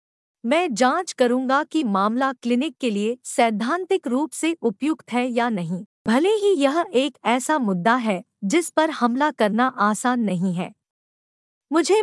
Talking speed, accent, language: 150 wpm, Indian, English